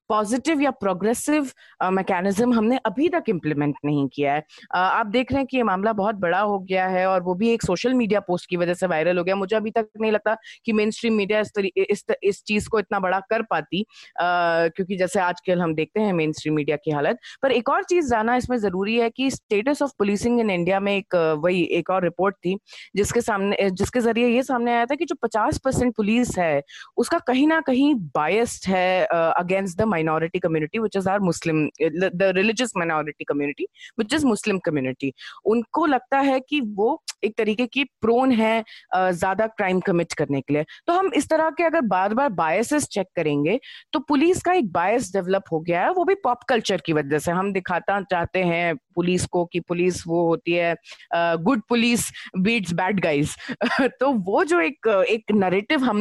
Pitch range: 180-245 Hz